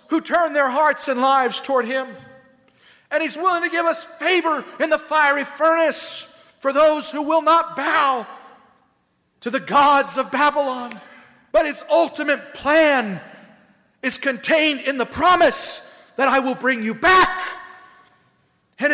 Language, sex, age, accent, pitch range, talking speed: English, male, 50-69, American, 225-300 Hz, 145 wpm